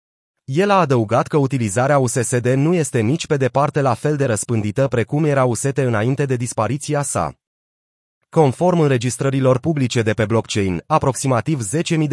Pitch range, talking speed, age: 115-150 Hz, 150 wpm, 30-49